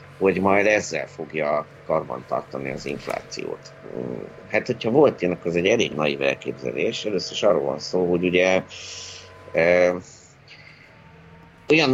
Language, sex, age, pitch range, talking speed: Hungarian, male, 50-69, 75-95 Hz, 130 wpm